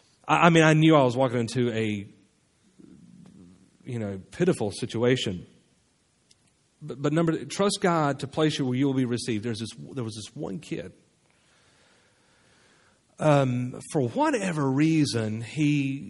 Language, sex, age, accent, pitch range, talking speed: English, male, 40-59, American, 125-170 Hz, 140 wpm